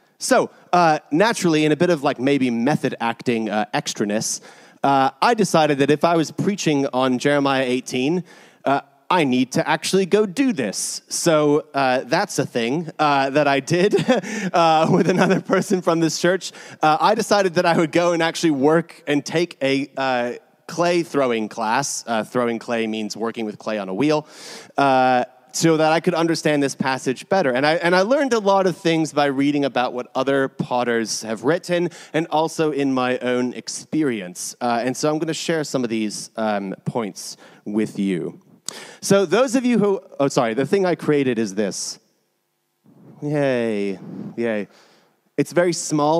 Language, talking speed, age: English, 180 wpm, 30-49